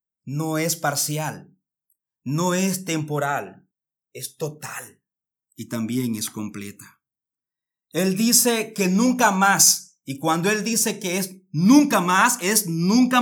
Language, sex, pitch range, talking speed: Spanish, male, 145-195 Hz, 125 wpm